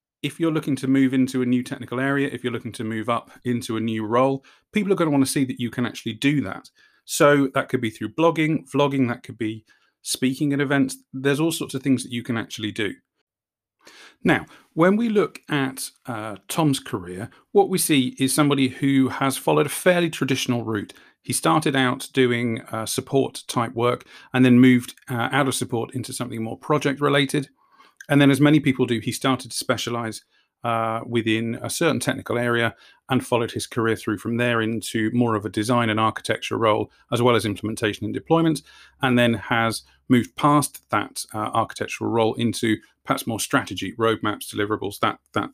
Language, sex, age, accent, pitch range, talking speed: English, male, 40-59, British, 115-140 Hz, 195 wpm